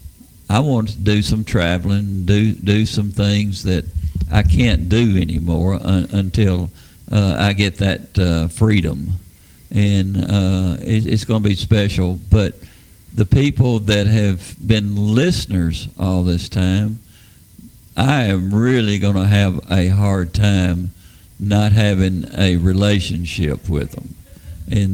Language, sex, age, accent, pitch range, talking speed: English, male, 50-69, American, 90-105 Hz, 135 wpm